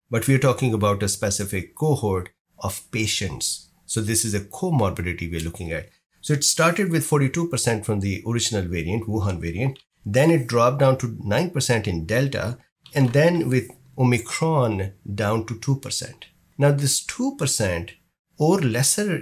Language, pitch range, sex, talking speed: English, 100-140 Hz, male, 150 wpm